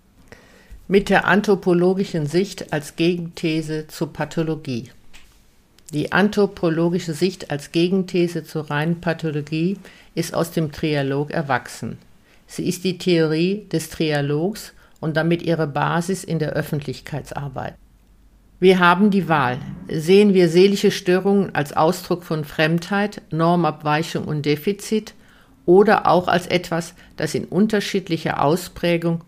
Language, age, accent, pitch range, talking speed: German, 50-69, German, 150-180 Hz, 115 wpm